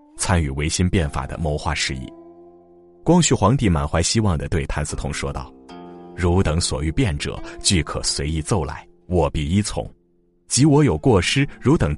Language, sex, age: Chinese, male, 30-49